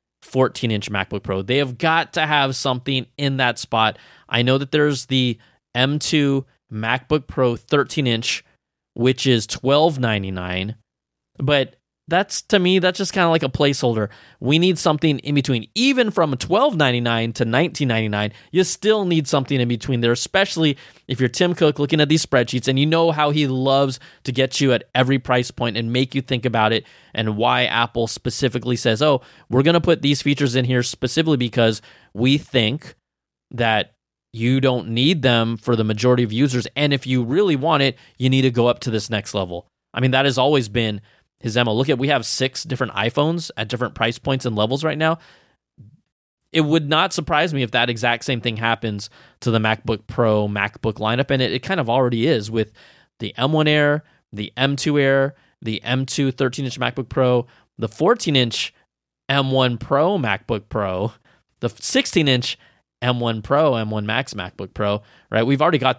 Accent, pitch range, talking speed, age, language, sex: American, 115-145 Hz, 185 wpm, 20-39, English, male